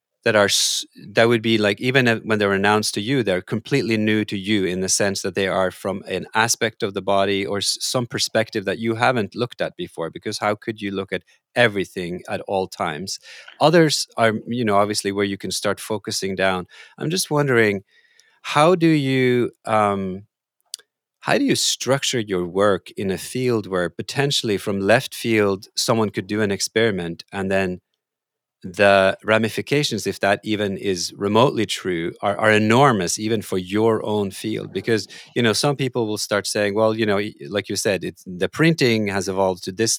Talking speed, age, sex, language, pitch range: 185 wpm, 30-49, male, English, 100-120 Hz